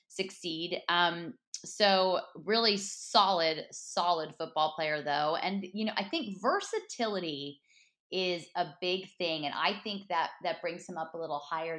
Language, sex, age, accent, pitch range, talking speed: English, female, 20-39, American, 155-190 Hz, 155 wpm